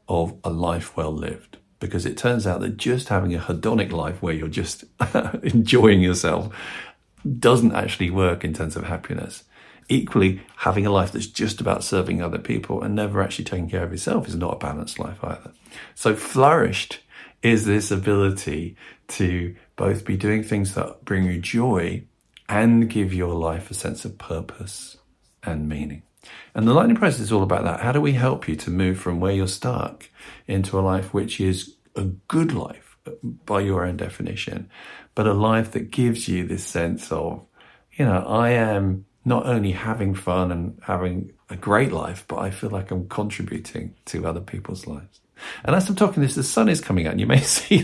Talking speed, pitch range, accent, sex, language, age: 190 wpm, 90-110 Hz, British, male, English, 50-69